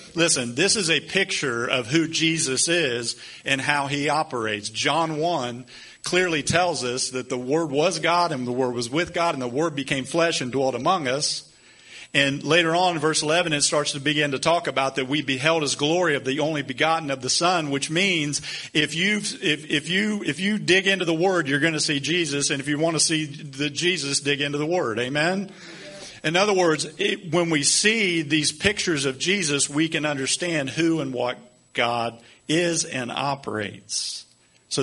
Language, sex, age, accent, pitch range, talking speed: English, male, 40-59, American, 130-170 Hz, 200 wpm